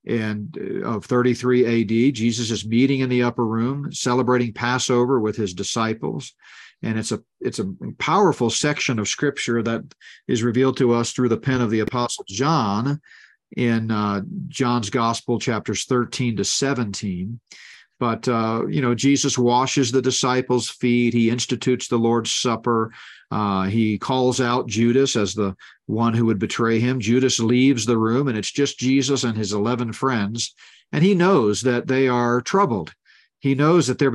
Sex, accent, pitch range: male, American, 115-135 Hz